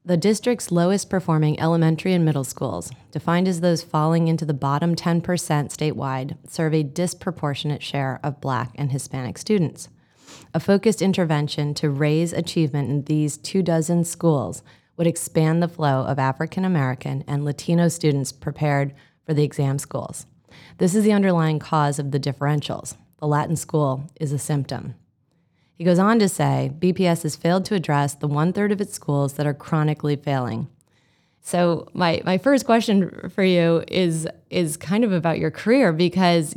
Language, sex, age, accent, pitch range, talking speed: English, female, 30-49, American, 150-180 Hz, 160 wpm